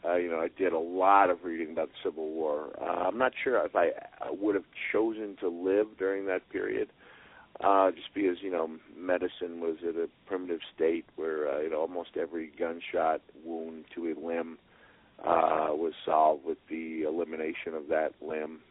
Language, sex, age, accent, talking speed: English, male, 40-59, American, 190 wpm